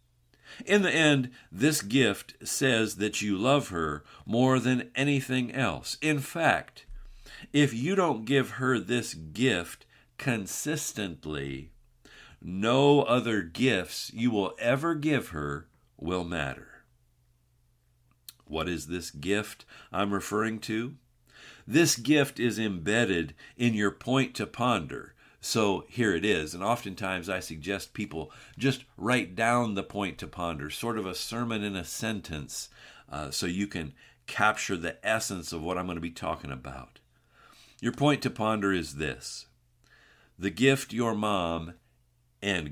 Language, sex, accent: English, male, American